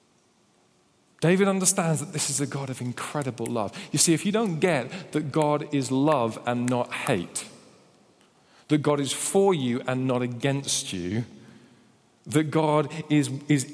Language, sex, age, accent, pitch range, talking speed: English, male, 40-59, British, 135-170 Hz, 155 wpm